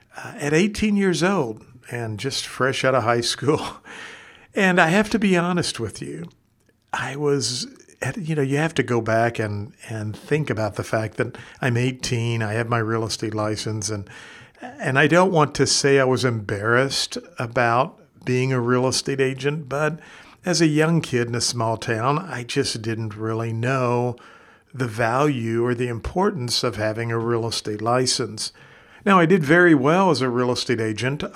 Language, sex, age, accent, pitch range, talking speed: English, male, 50-69, American, 115-145 Hz, 185 wpm